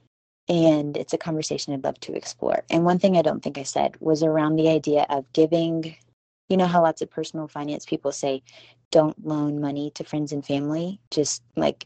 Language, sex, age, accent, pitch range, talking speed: English, female, 20-39, American, 140-170 Hz, 200 wpm